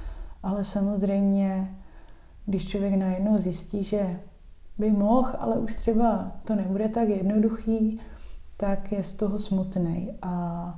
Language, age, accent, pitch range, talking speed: Czech, 30-49, native, 180-200 Hz, 120 wpm